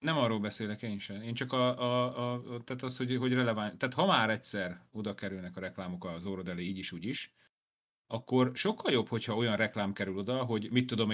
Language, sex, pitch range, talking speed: Hungarian, male, 95-125 Hz, 220 wpm